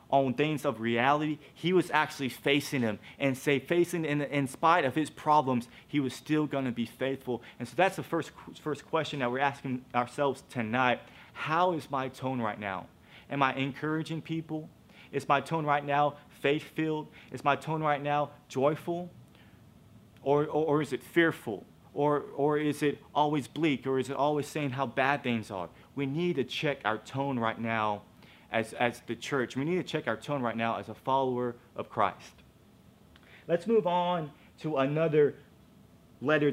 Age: 30-49